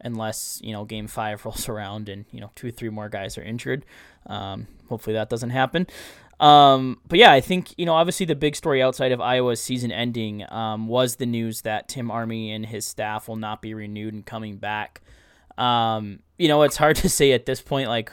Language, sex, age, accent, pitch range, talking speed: English, male, 10-29, American, 110-130 Hz, 220 wpm